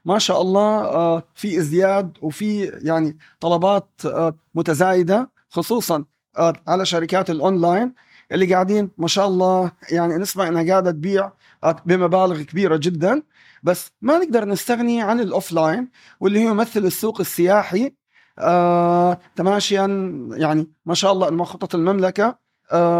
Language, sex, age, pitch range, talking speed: Arabic, male, 30-49, 170-215 Hz, 115 wpm